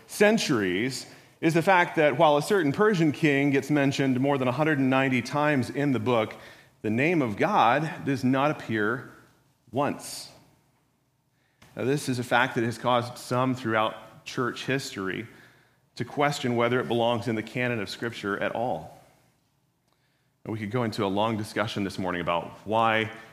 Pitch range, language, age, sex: 115-145 Hz, English, 40-59, male